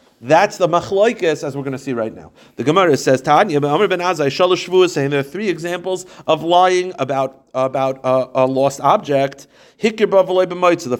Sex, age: male, 40-59